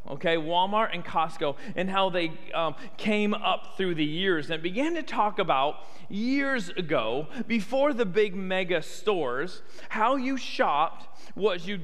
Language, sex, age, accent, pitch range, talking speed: English, male, 40-59, American, 170-220 Hz, 150 wpm